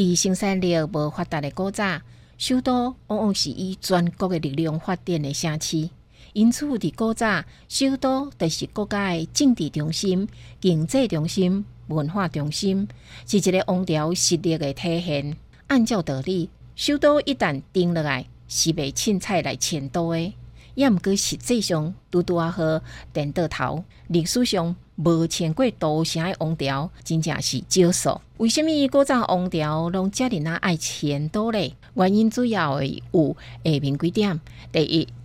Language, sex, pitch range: Chinese, female, 150-210 Hz